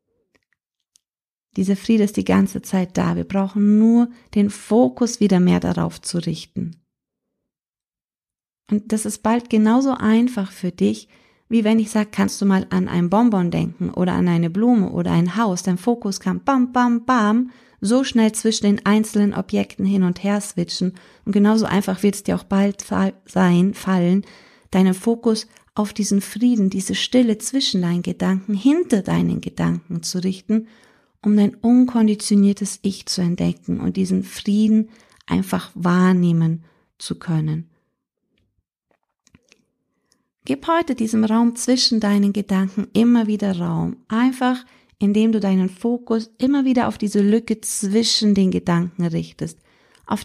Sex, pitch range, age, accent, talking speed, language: female, 185-225 Hz, 30-49, German, 145 wpm, German